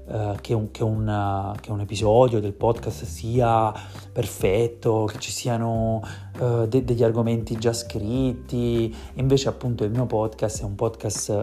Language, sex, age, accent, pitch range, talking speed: Italian, male, 30-49, native, 100-120 Hz, 120 wpm